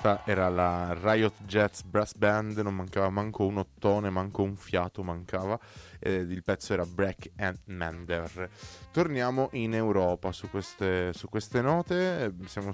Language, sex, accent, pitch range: Italian, male, native, 90-110 Hz